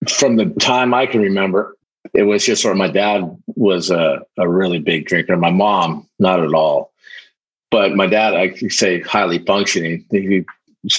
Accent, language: American, English